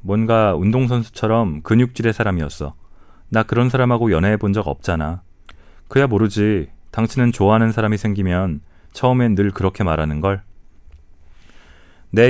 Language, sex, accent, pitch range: Korean, male, native, 85-115 Hz